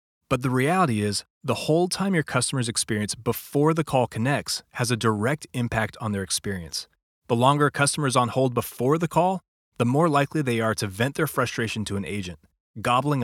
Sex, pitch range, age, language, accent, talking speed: male, 105-140 Hz, 30-49, English, American, 200 wpm